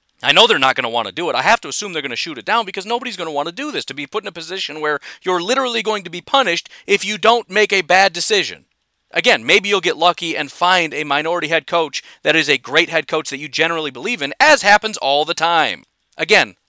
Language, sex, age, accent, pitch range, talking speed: English, male, 40-59, American, 145-215 Hz, 275 wpm